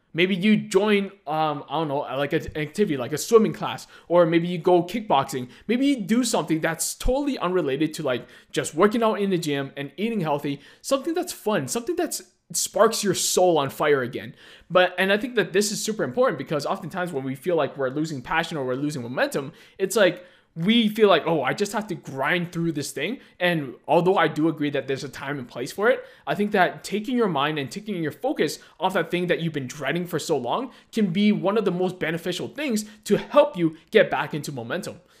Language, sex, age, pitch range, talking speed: English, male, 20-39, 150-210 Hz, 225 wpm